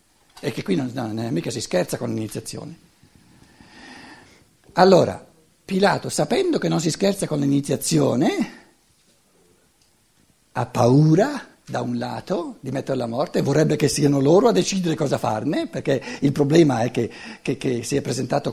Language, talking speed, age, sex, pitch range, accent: Italian, 160 wpm, 60-79, male, 120-175 Hz, native